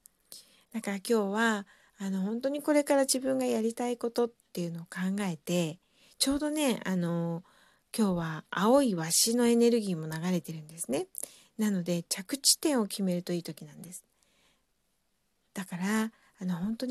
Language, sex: Japanese, female